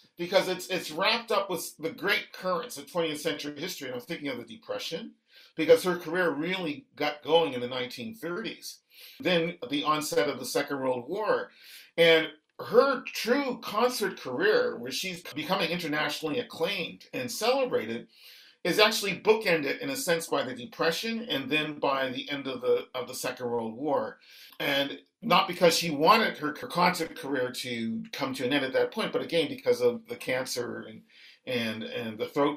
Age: 50-69